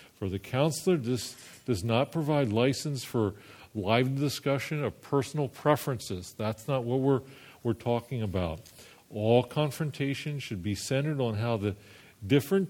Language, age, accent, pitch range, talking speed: English, 50-69, American, 105-135 Hz, 140 wpm